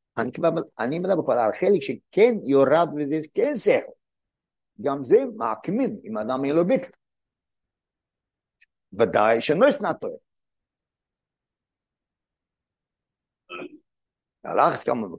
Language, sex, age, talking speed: Hebrew, male, 60-79, 85 wpm